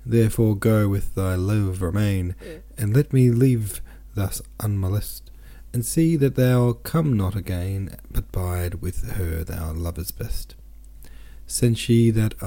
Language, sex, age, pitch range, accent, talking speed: English, male, 40-59, 85-105 Hz, Australian, 145 wpm